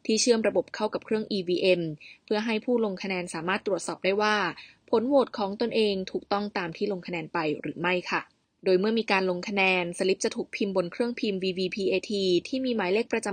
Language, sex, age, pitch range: Thai, female, 20-39, 185-225 Hz